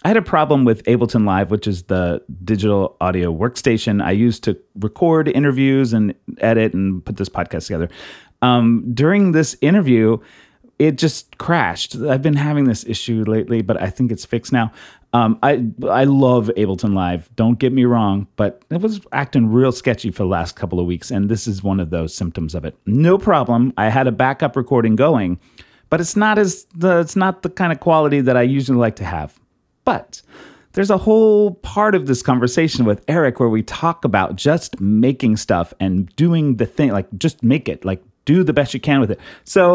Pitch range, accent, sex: 105-155 Hz, American, male